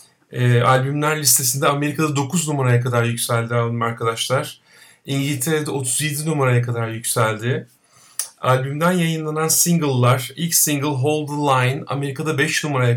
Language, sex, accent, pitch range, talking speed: Turkish, male, native, 125-155 Hz, 115 wpm